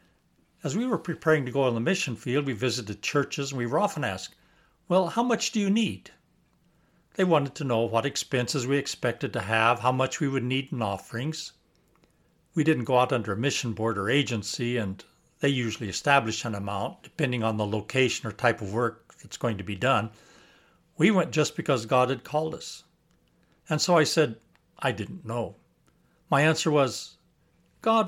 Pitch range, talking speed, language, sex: 115-155 Hz, 190 wpm, English, male